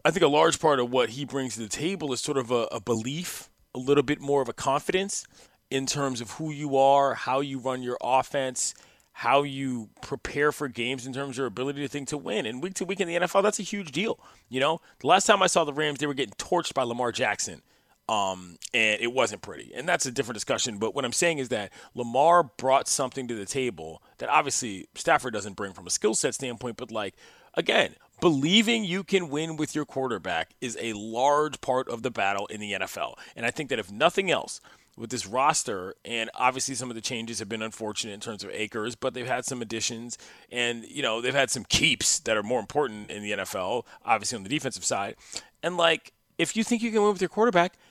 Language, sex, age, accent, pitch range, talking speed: English, male, 30-49, American, 120-160 Hz, 235 wpm